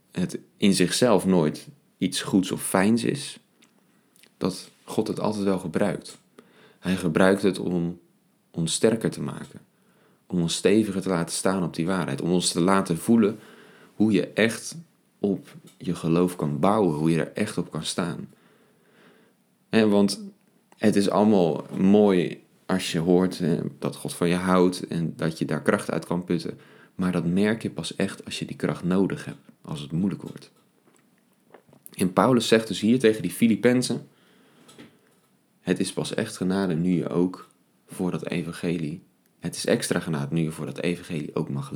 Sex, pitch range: male, 85-105 Hz